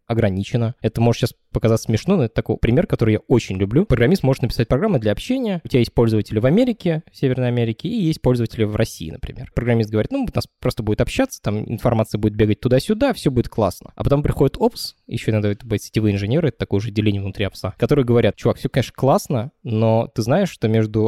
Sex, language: male, Russian